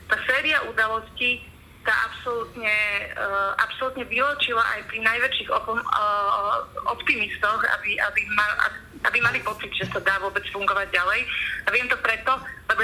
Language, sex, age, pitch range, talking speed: Slovak, female, 20-39, 200-230 Hz, 145 wpm